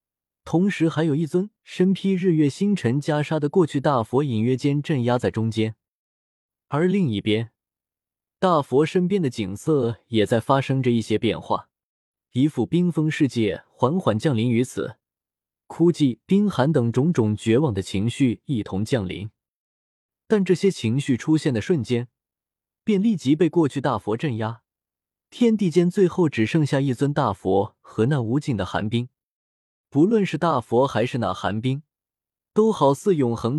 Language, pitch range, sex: Chinese, 110-170 Hz, male